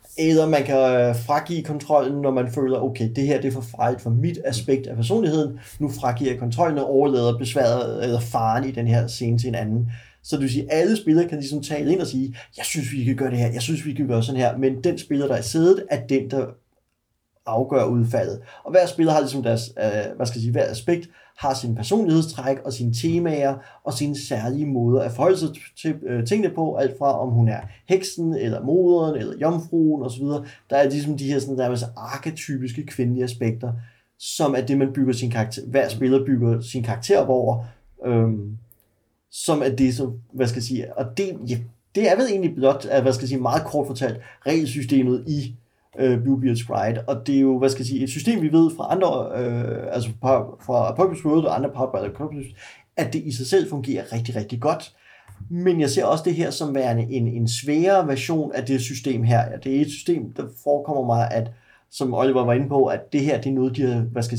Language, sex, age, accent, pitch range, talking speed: Danish, male, 30-49, native, 120-150 Hz, 225 wpm